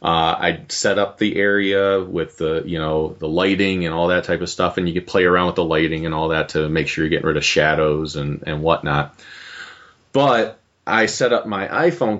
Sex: male